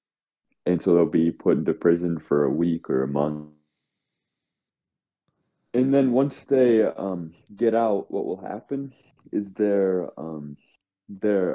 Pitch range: 85-105 Hz